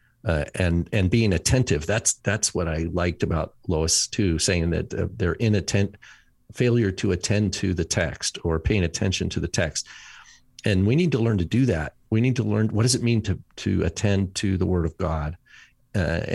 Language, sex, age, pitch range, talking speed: English, male, 50-69, 90-110 Hz, 190 wpm